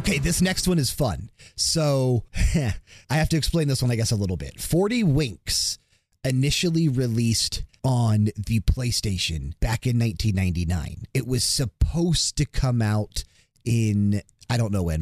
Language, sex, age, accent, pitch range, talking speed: English, male, 30-49, American, 90-120 Hz, 155 wpm